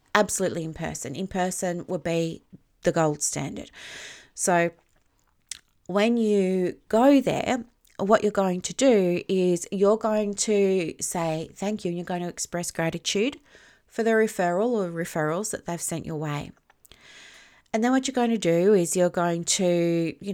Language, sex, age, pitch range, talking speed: English, female, 30-49, 175-230 Hz, 160 wpm